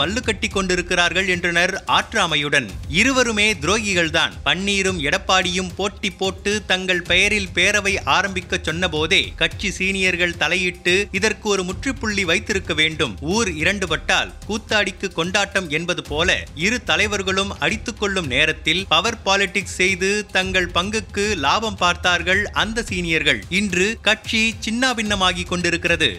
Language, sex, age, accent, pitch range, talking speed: Tamil, male, 30-49, native, 170-195 Hz, 115 wpm